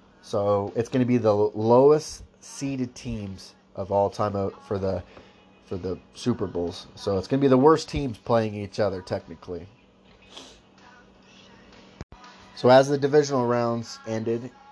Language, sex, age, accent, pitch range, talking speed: English, male, 30-49, American, 110-135 Hz, 150 wpm